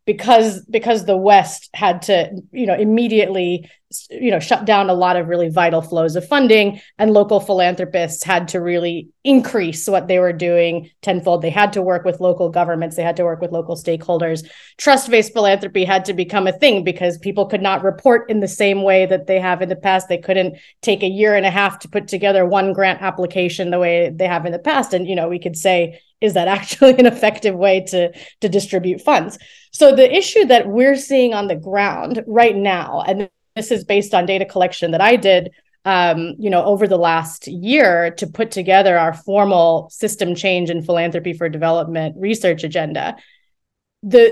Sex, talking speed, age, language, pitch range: female, 200 wpm, 30-49, English, 175-210 Hz